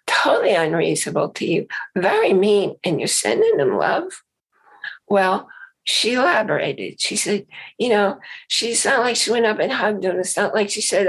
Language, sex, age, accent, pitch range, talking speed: English, female, 50-69, American, 185-235 Hz, 175 wpm